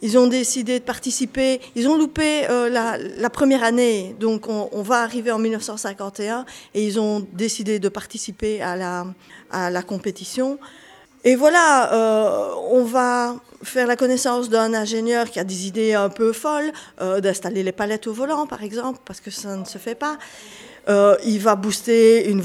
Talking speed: 180 wpm